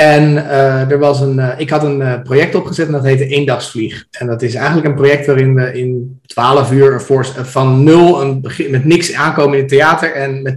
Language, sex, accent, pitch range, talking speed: Dutch, male, Dutch, 130-150 Hz, 200 wpm